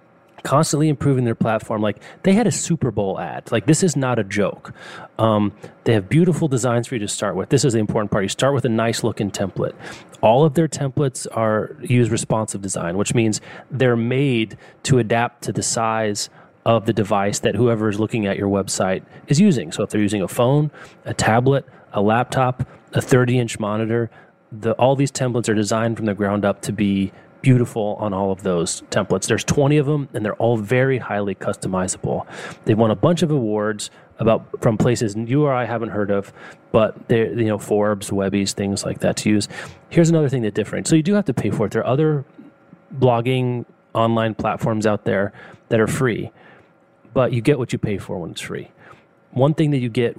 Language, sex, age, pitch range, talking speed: English, male, 30-49, 105-135 Hz, 210 wpm